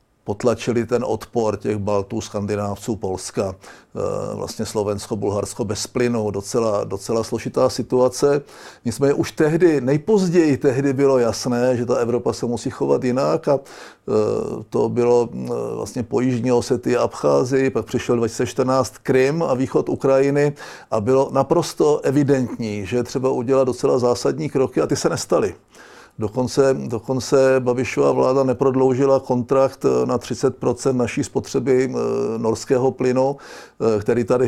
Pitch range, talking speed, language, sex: 120-140 Hz, 125 wpm, Czech, male